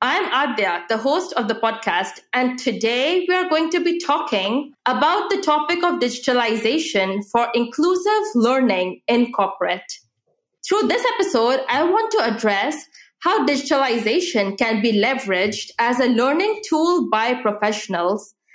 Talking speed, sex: 140 wpm, female